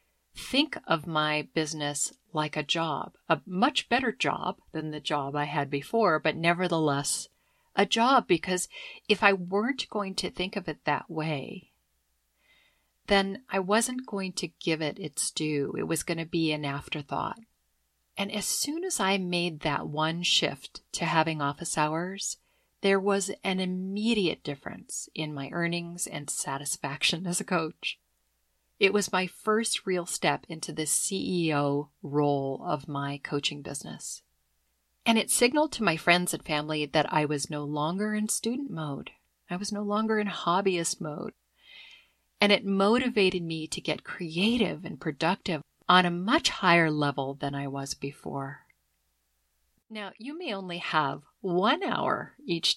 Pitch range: 150-200 Hz